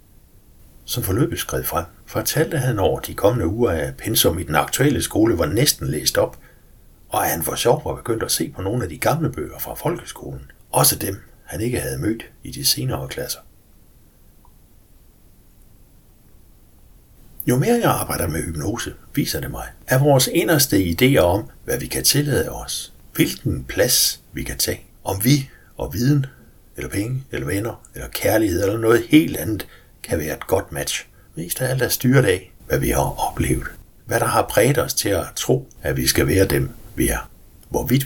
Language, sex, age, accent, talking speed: Danish, male, 60-79, native, 185 wpm